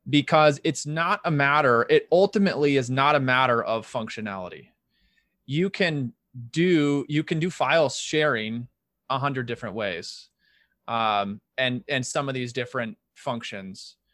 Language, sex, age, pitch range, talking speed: English, male, 20-39, 125-155 Hz, 140 wpm